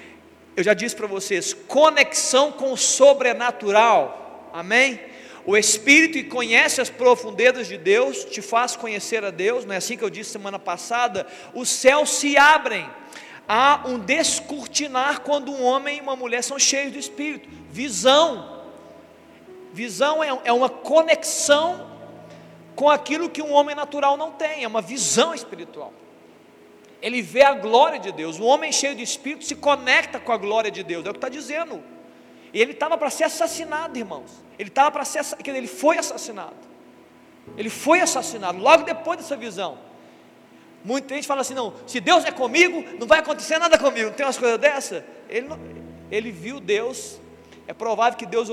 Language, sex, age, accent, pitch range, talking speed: Portuguese, male, 40-59, Brazilian, 215-295 Hz, 170 wpm